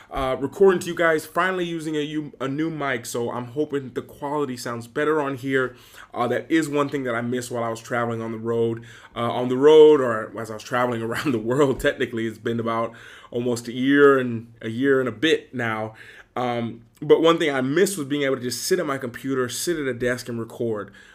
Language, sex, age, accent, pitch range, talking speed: English, male, 20-39, American, 115-145 Hz, 235 wpm